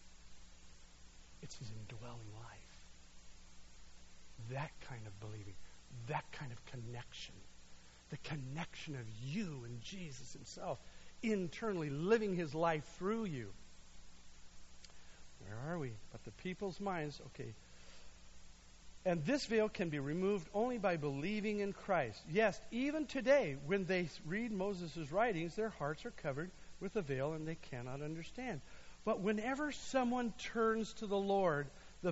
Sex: male